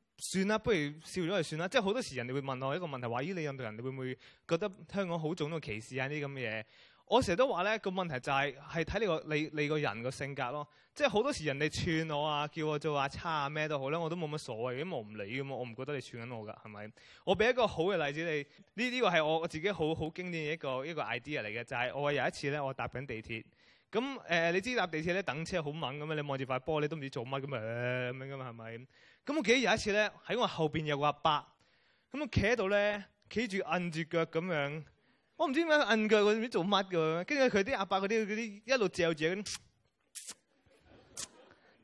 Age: 20-39